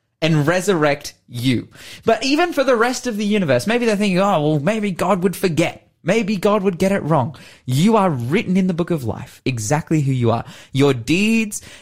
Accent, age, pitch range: Australian, 20-39, 115-175 Hz